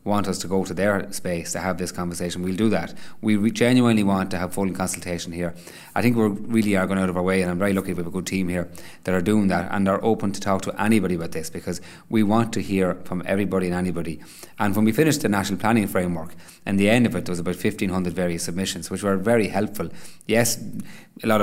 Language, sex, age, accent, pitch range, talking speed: English, male, 30-49, Irish, 90-105 Hz, 250 wpm